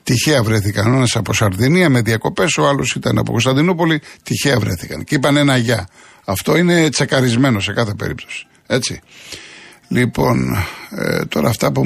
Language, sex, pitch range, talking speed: Greek, male, 115-145 Hz, 155 wpm